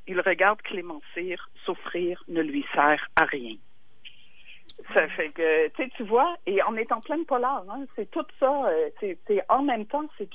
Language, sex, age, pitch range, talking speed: French, female, 60-79, 195-275 Hz, 180 wpm